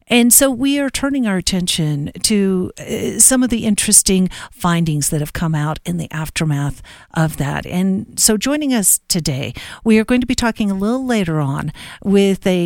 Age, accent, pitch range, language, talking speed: 50-69, American, 165-205 Hz, English, 190 wpm